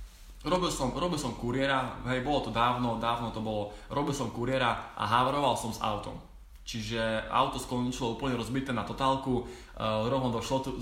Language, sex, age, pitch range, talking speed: Slovak, male, 20-39, 110-140 Hz, 165 wpm